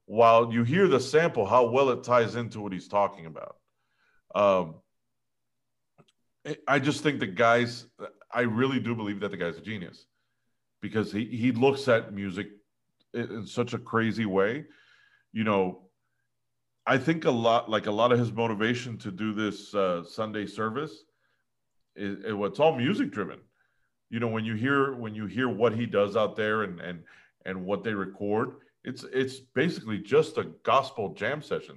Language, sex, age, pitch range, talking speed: English, male, 40-59, 100-120 Hz, 170 wpm